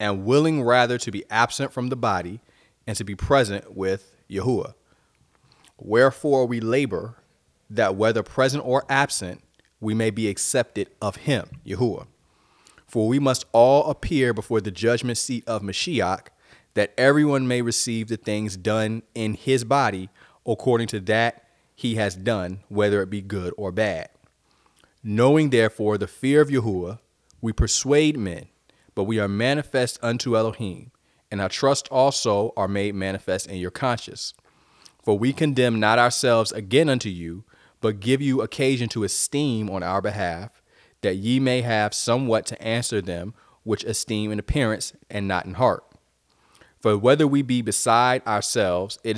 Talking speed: 155 wpm